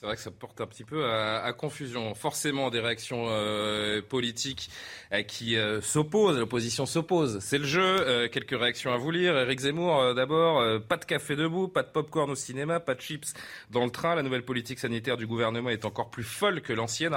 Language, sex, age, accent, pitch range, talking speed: French, male, 30-49, French, 110-140 Hz, 220 wpm